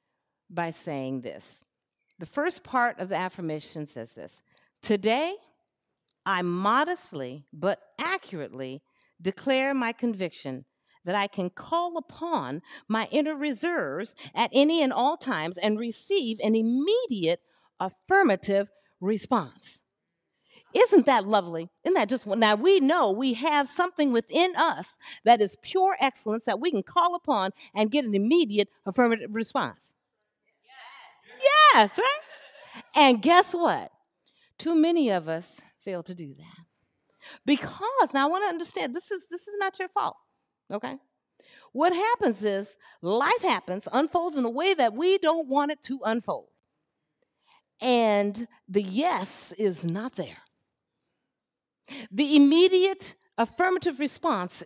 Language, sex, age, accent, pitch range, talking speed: English, female, 50-69, American, 200-325 Hz, 130 wpm